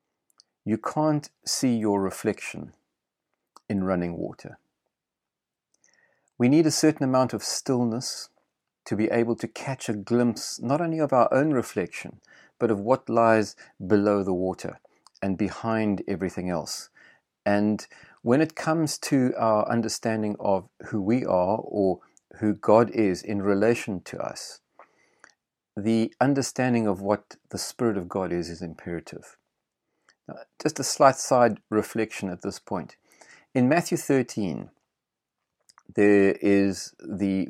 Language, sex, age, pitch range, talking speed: English, male, 40-59, 100-125 Hz, 135 wpm